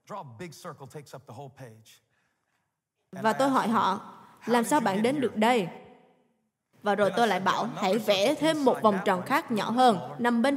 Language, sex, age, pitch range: Vietnamese, female, 20-39, 200-270 Hz